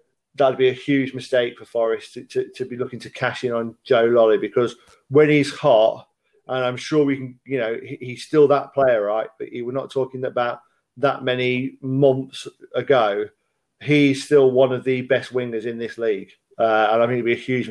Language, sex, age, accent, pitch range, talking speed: English, male, 40-59, British, 120-140 Hz, 215 wpm